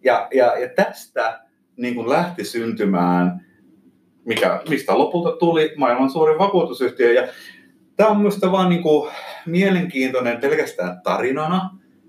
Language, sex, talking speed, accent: Finnish, male, 115 wpm, native